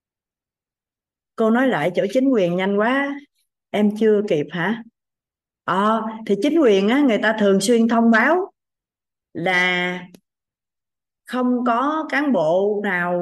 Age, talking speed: 20-39, 135 wpm